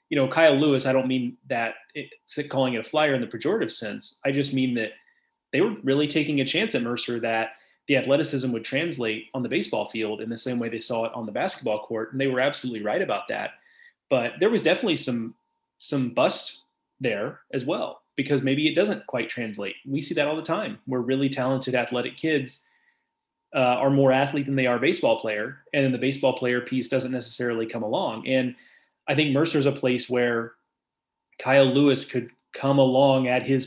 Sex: male